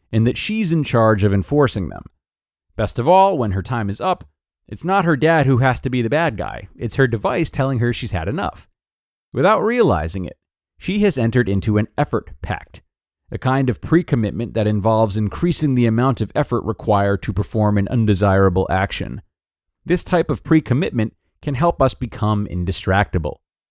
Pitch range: 95-135 Hz